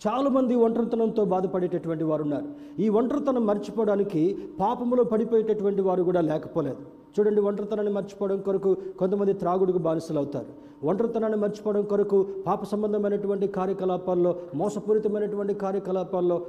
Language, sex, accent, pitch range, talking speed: Telugu, male, native, 160-220 Hz, 100 wpm